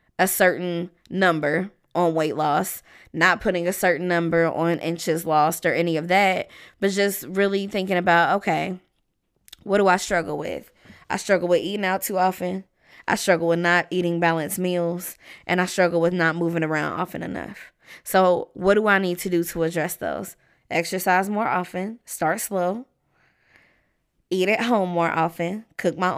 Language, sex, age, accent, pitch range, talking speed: English, female, 20-39, American, 170-200 Hz, 170 wpm